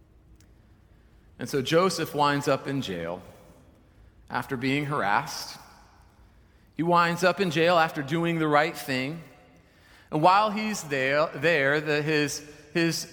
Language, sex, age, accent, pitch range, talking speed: English, male, 40-59, American, 120-175 Hz, 130 wpm